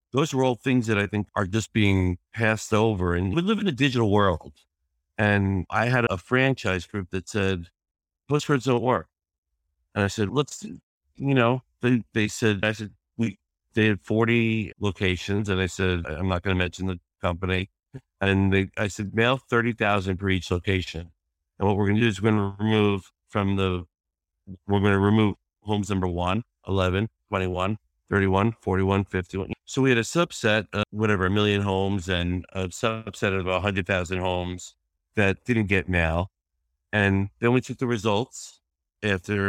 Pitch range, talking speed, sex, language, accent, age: 90-110 Hz, 175 wpm, male, English, American, 50-69